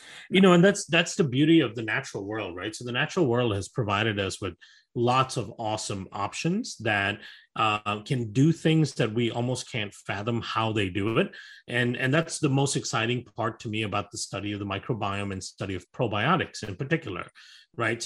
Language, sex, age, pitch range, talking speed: English, male, 30-49, 105-135 Hz, 200 wpm